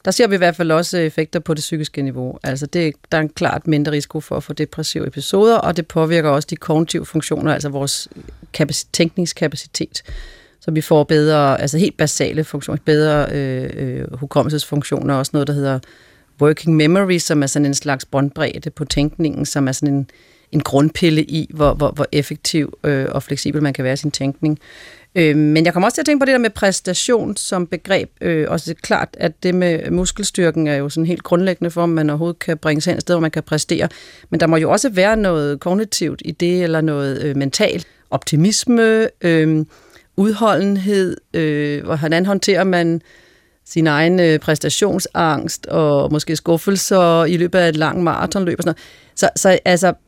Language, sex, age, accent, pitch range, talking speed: Danish, female, 40-59, native, 145-175 Hz, 190 wpm